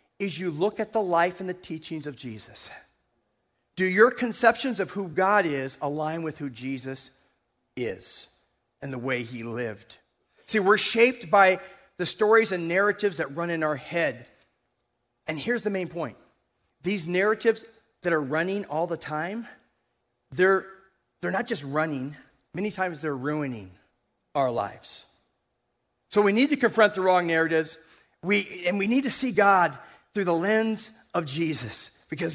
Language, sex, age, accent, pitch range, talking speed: English, male, 40-59, American, 145-210 Hz, 160 wpm